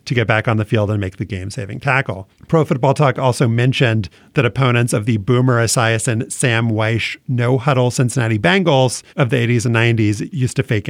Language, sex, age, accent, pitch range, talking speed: English, male, 40-59, American, 110-135 Hz, 195 wpm